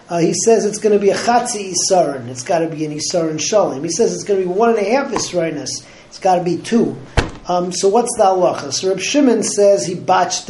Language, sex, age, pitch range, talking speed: English, male, 40-59, 175-215 Hz, 245 wpm